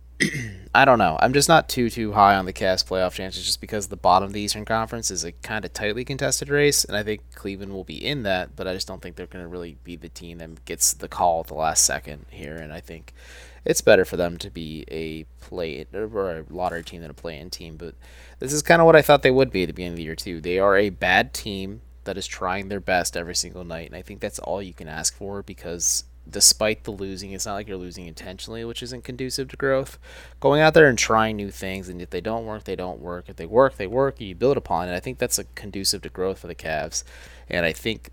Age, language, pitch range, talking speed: 20-39, English, 85-105 Hz, 265 wpm